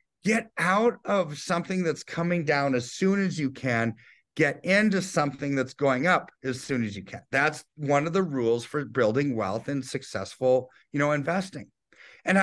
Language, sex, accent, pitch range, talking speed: English, male, American, 125-170 Hz, 180 wpm